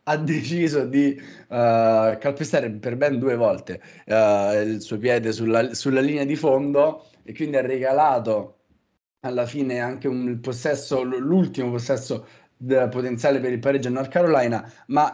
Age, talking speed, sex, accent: 30-49, 145 wpm, male, native